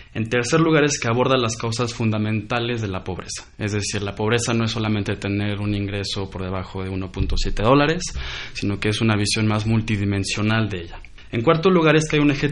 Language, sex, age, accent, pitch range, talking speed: Spanish, male, 20-39, Mexican, 100-130 Hz, 210 wpm